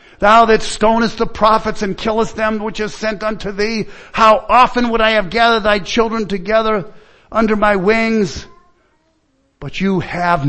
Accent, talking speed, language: American, 160 wpm, English